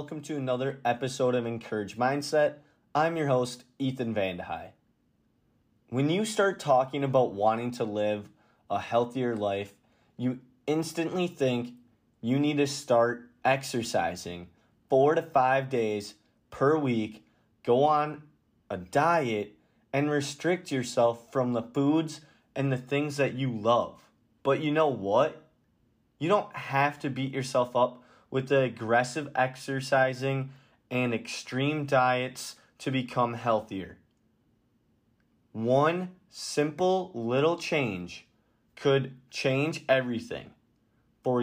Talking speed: 120 wpm